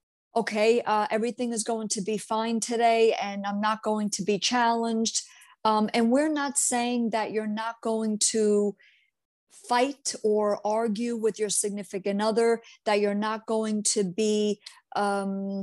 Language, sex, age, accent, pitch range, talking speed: English, female, 50-69, American, 205-235 Hz, 155 wpm